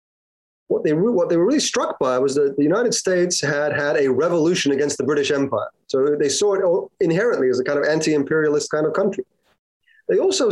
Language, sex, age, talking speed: English, male, 30-49, 200 wpm